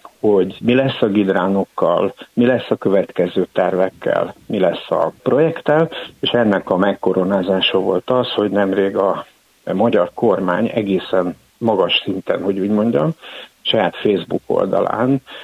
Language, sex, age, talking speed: Hungarian, male, 60-79, 130 wpm